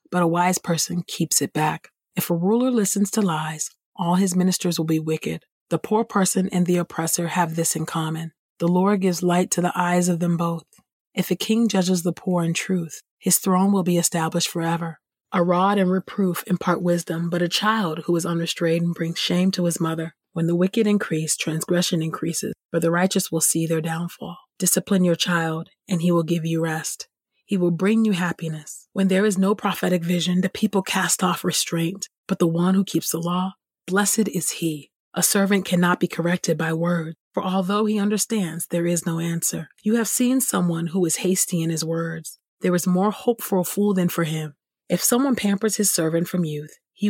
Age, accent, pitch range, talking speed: 30-49, American, 165-190 Hz, 205 wpm